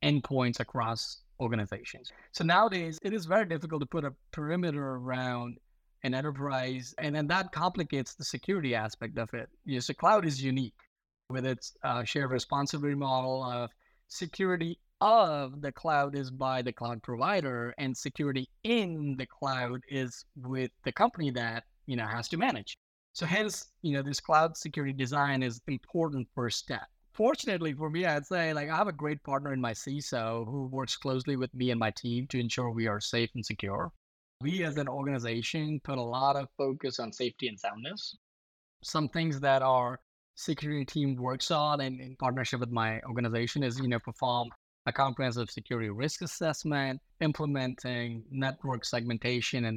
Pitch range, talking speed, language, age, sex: 120-145 Hz, 170 wpm, English, 20-39, male